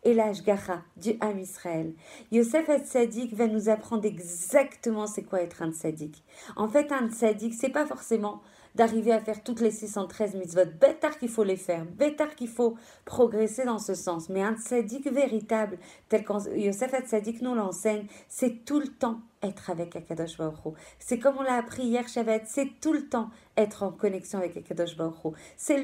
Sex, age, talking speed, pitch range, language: female, 40-59, 185 wpm, 200-255 Hz, French